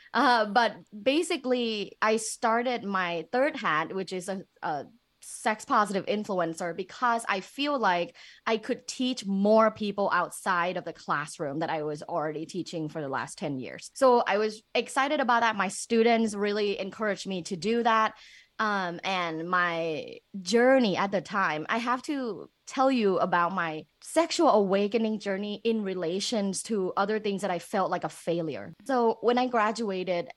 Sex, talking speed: female, 165 wpm